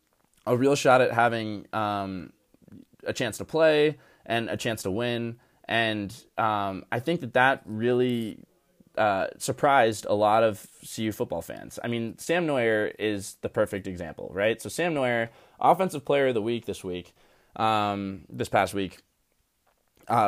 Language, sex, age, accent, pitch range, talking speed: English, male, 20-39, American, 100-125 Hz, 160 wpm